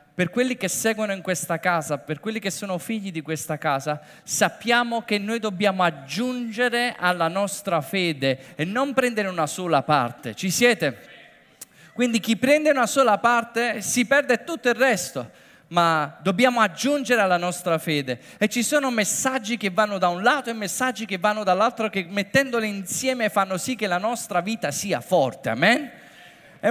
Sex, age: male, 20-39